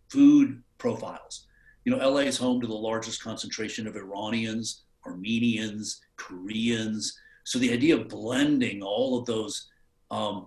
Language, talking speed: English, 140 wpm